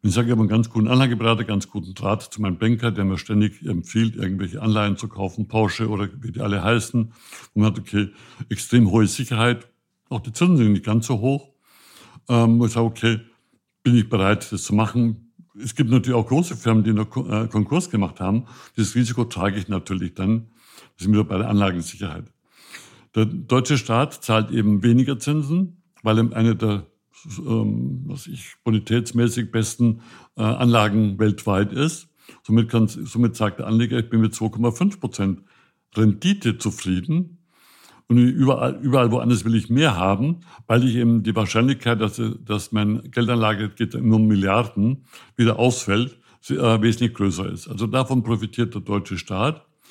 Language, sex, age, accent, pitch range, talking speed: German, male, 60-79, German, 105-125 Hz, 165 wpm